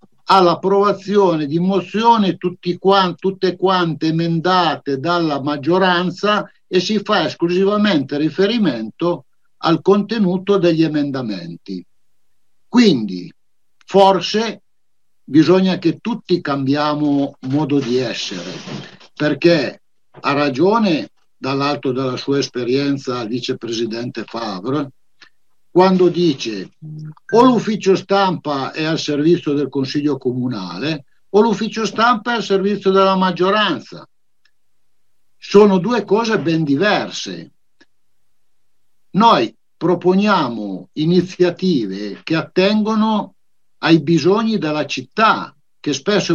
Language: Italian